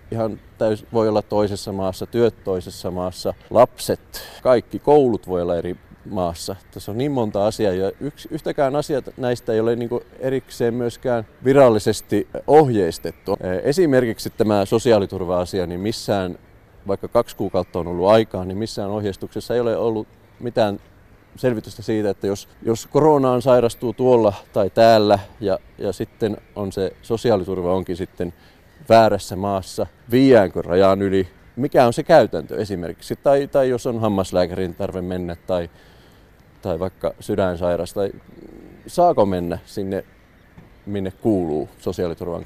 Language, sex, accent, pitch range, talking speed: Finnish, male, native, 95-115 Hz, 140 wpm